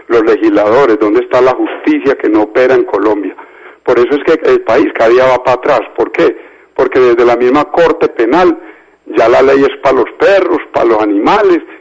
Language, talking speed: Spanish, 205 wpm